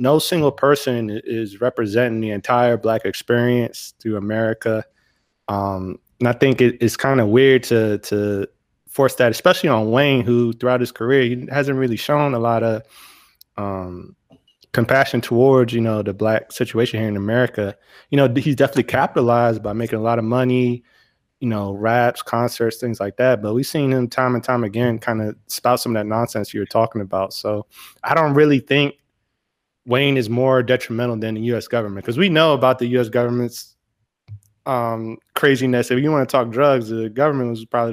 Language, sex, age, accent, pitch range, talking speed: English, male, 20-39, American, 110-135 Hz, 185 wpm